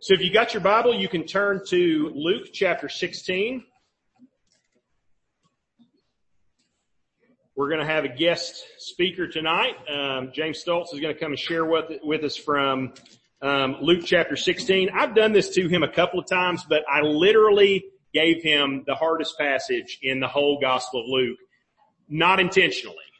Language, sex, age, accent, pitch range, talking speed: English, male, 40-59, American, 145-195 Hz, 165 wpm